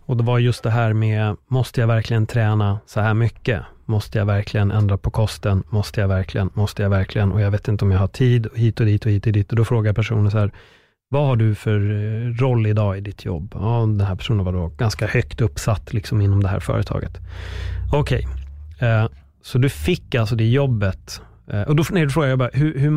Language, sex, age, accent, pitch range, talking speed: Swedish, male, 30-49, native, 95-120 Hz, 220 wpm